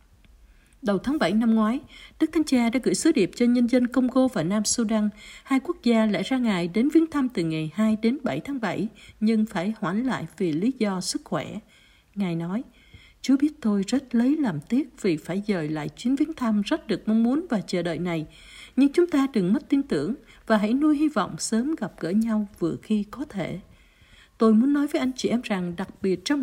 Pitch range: 190-255 Hz